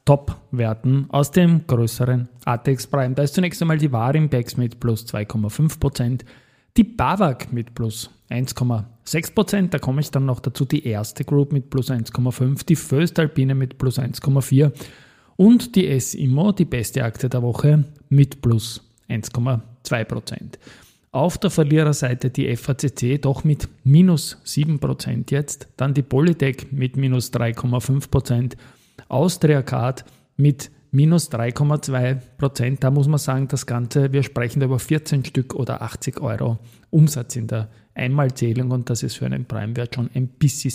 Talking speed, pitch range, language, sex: 145 wpm, 120-145 Hz, German, male